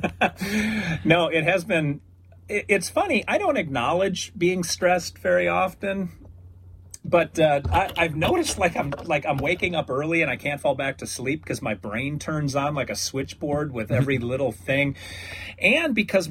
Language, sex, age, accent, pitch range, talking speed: English, male, 40-59, American, 115-160 Hz, 160 wpm